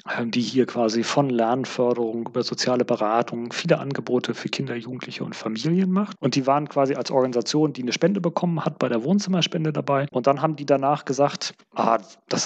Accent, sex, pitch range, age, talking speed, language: German, male, 120-155 Hz, 30-49, 190 wpm, German